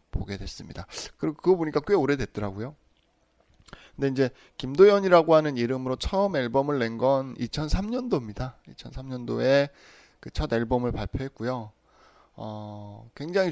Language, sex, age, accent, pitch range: Korean, male, 20-39, native, 110-145 Hz